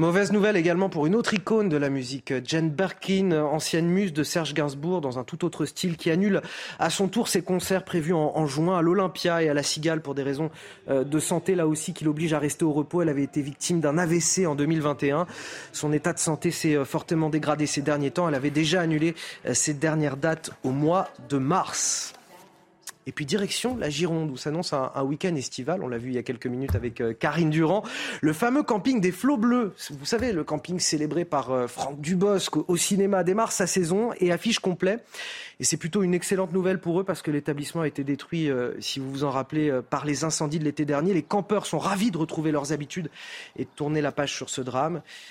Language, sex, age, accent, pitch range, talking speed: French, male, 30-49, French, 145-185 Hz, 225 wpm